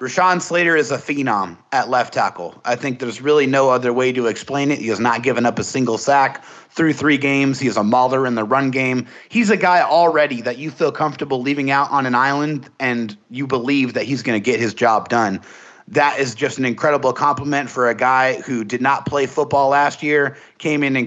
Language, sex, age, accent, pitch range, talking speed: English, male, 30-49, American, 125-145 Hz, 230 wpm